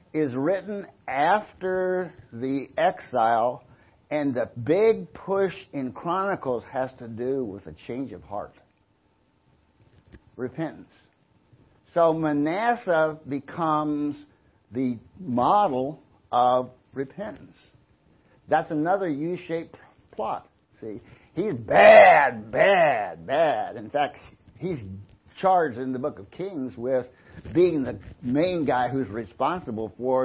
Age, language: 60-79, English